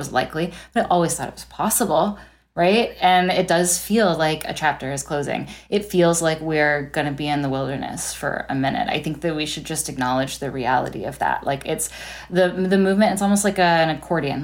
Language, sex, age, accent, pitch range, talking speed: English, female, 10-29, American, 150-190 Hz, 220 wpm